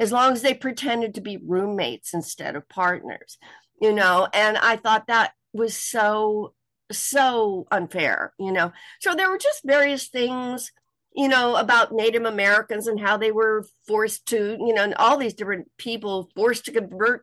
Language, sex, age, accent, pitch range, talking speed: English, female, 50-69, American, 195-245 Hz, 175 wpm